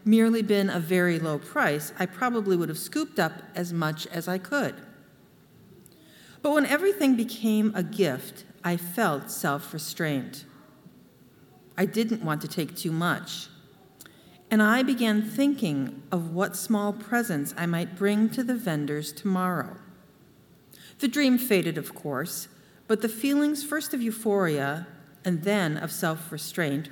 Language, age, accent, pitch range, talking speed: English, 50-69, American, 160-220 Hz, 140 wpm